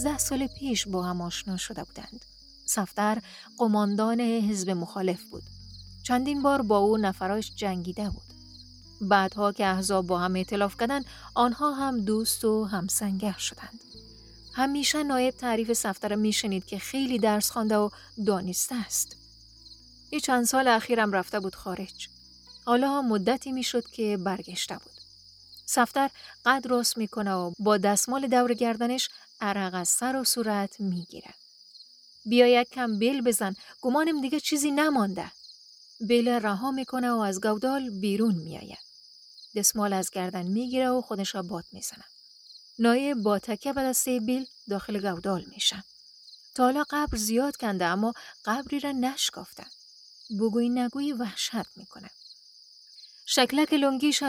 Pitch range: 195-255 Hz